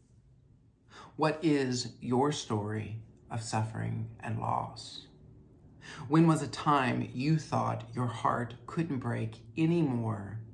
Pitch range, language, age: 110-125 Hz, English, 50-69